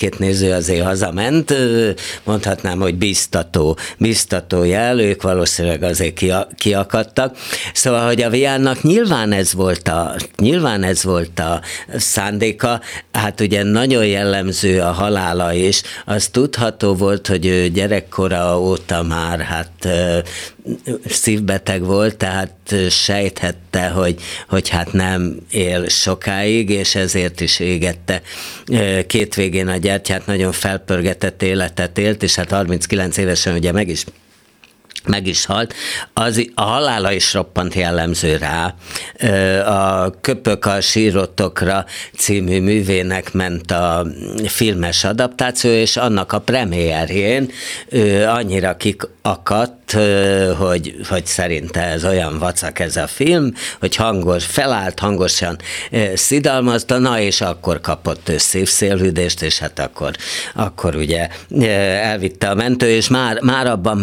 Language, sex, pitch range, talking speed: Hungarian, male, 90-110 Hz, 120 wpm